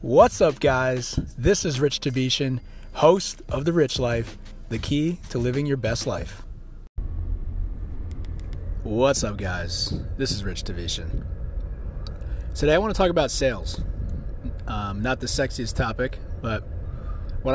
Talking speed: 135 wpm